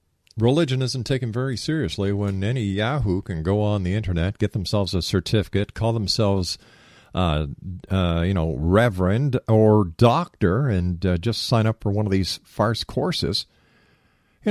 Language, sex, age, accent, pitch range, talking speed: English, male, 50-69, American, 85-125 Hz, 155 wpm